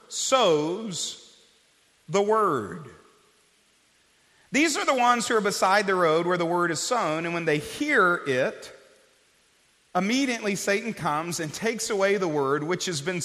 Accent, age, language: American, 40-59, English